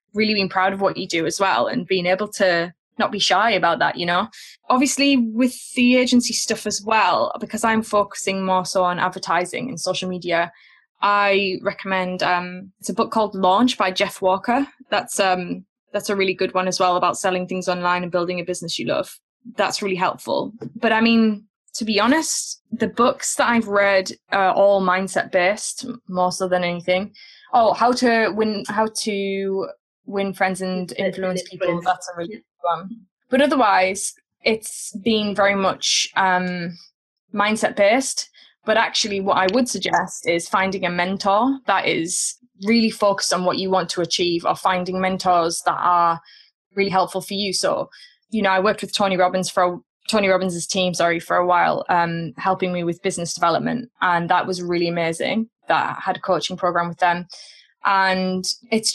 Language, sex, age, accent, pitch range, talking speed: English, female, 10-29, British, 180-220 Hz, 185 wpm